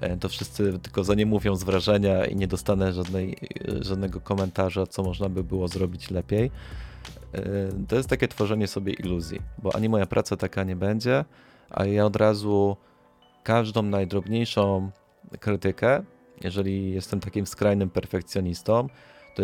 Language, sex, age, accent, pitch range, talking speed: Polish, male, 30-49, native, 95-110 Hz, 140 wpm